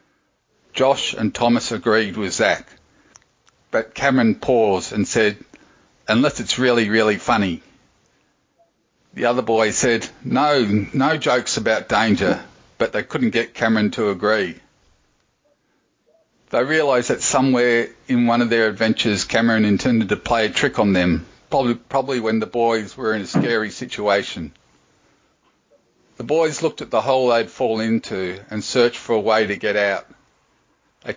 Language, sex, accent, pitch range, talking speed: English, male, Australian, 110-135 Hz, 150 wpm